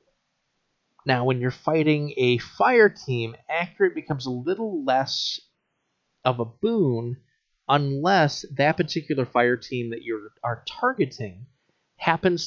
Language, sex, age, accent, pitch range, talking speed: English, male, 30-49, American, 115-145 Hz, 120 wpm